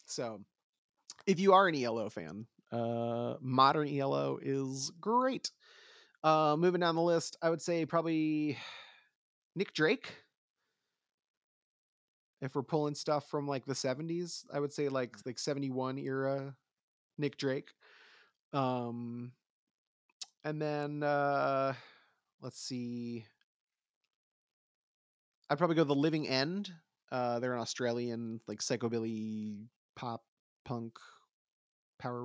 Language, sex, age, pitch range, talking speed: English, male, 30-49, 120-150 Hz, 115 wpm